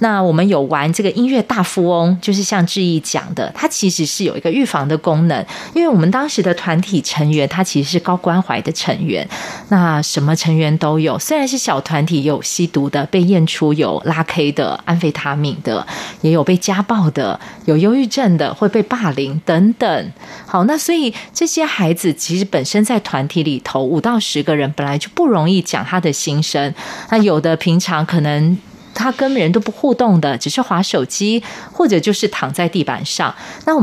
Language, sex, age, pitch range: Chinese, female, 30-49, 160-225 Hz